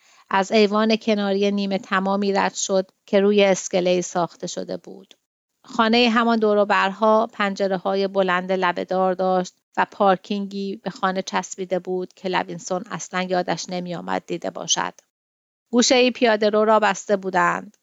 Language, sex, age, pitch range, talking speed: Persian, female, 30-49, 180-205 Hz, 140 wpm